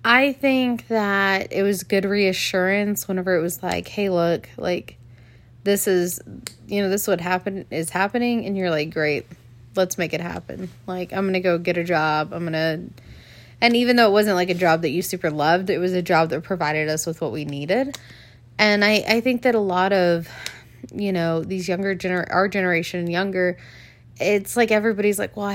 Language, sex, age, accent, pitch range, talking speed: English, female, 20-39, American, 160-205 Hz, 205 wpm